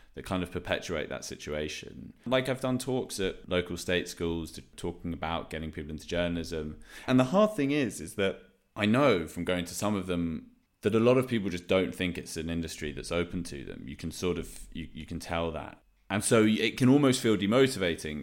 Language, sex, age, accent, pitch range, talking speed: English, male, 20-39, British, 80-95 Hz, 215 wpm